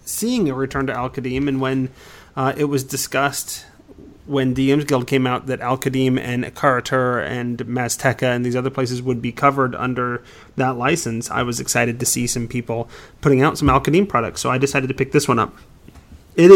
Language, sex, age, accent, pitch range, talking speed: English, male, 30-49, American, 130-150 Hz, 190 wpm